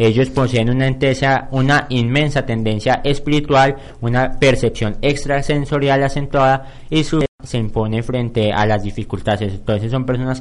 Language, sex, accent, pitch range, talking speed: Spanish, male, Colombian, 120-140 Hz, 135 wpm